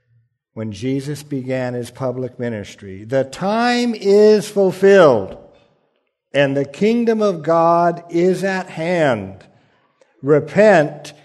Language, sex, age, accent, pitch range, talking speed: English, male, 60-79, American, 130-185 Hz, 100 wpm